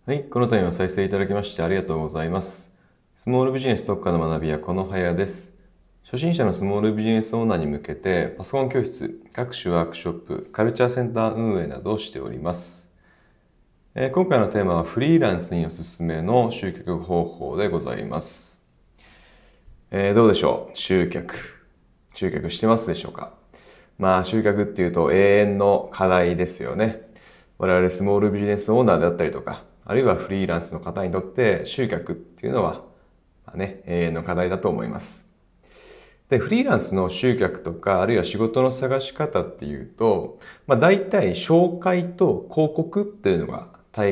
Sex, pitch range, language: male, 90-135 Hz, Japanese